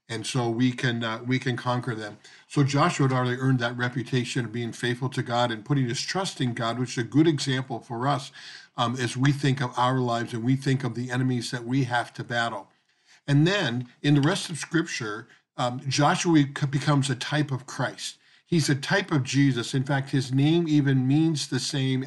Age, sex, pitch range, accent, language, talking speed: 50-69, male, 120-145 Hz, American, English, 215 wpm